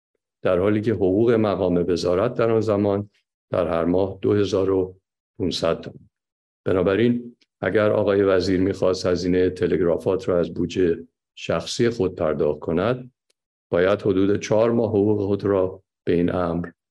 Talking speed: 135 wpm